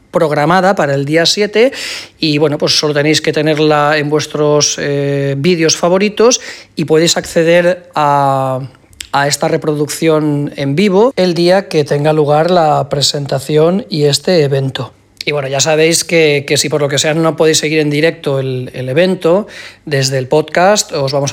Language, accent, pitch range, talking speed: English, Spanish, 145-175 Hz, 170 wpm